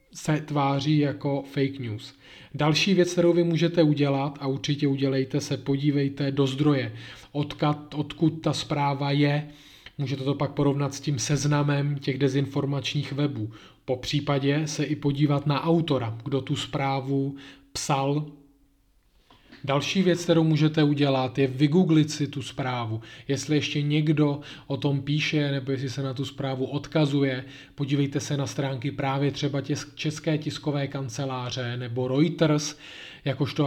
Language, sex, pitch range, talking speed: Czech, male, 135-150 Hz, 140 wpm